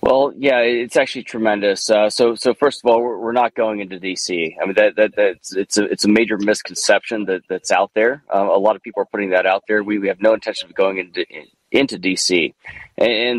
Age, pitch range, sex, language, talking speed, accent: 30-49, 100-120 Hz, male, English, 240 wpm, American